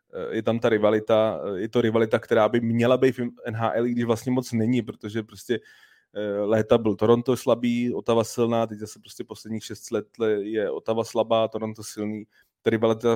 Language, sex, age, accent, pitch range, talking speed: Czech, male, 20-39, native, 105-115 Hz, 175 wpm